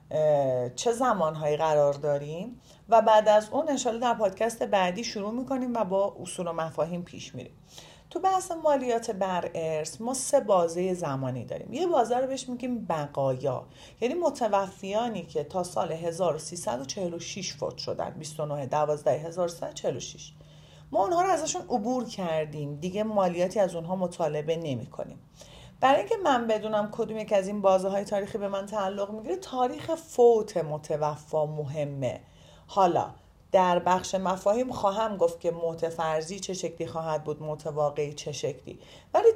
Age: 40-59